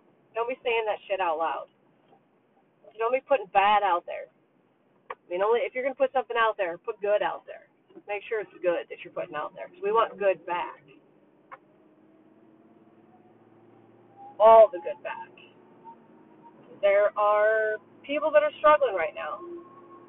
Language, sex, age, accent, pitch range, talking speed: English, female, 30-49, American, 225-360 Hz, 165 wpm